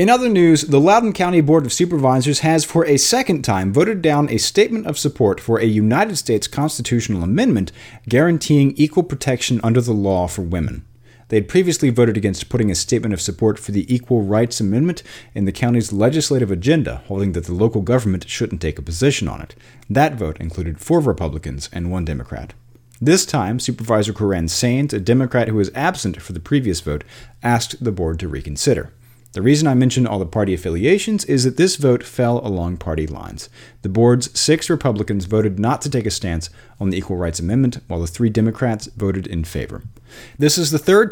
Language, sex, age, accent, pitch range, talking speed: English, male, 40-59, American, 100-140 Hz, 195 wpm